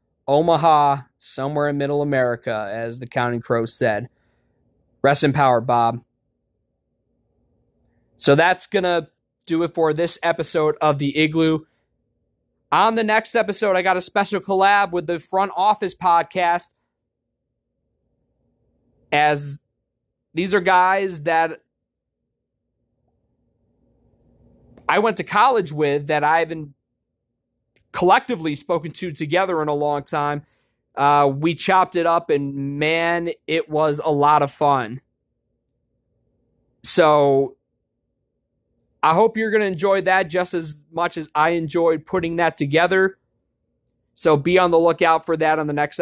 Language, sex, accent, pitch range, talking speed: English, male, American, 145-175 Hz, 135 wpm